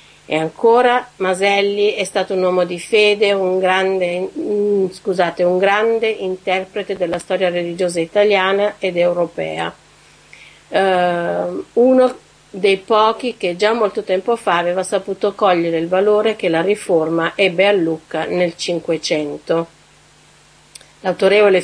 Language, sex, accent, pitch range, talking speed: Italian, female, native, 170-200 Hz, 115 wpm